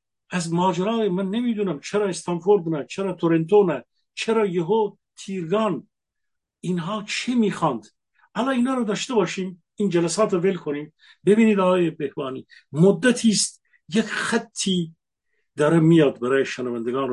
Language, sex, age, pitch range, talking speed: Persian, male, 50-69, 165-215 Hz, 120 wpm